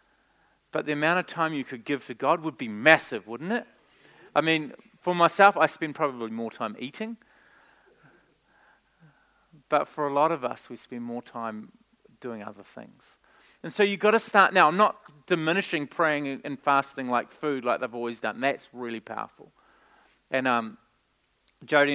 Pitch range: 130-165 Hz